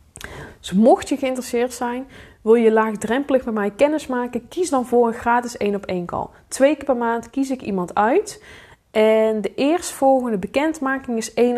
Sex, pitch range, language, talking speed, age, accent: female, 195-260 Hz, Dutch, 180 wpm, 20-39, Dutch